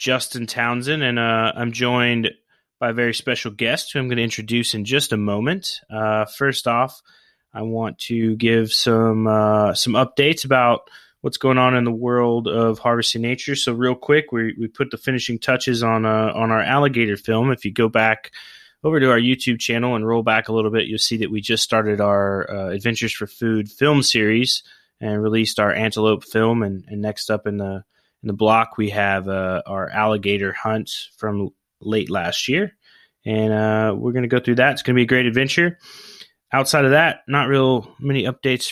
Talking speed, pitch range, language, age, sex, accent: 200 wpm, 110-125 Hz, English, 20-39, male, American